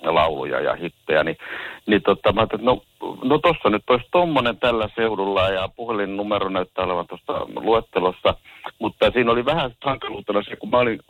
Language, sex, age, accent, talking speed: Finnish, male, 60-79, native, 175 wpm